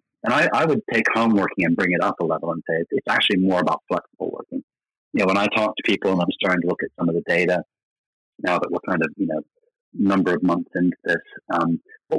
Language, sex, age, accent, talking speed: English, male, 40-59, American, 260 wpm